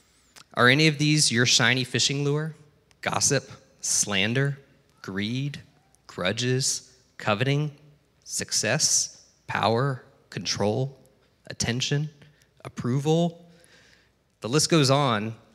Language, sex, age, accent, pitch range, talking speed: English, male, 20-39, American, 120-150 Hz, 85 wpm